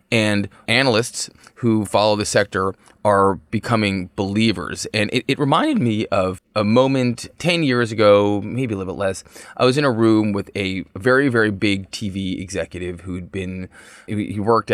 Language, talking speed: English, 165 wpm